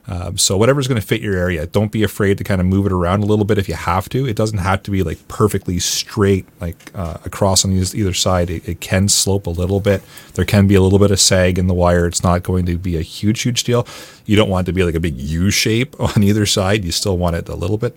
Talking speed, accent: 285 wpm, American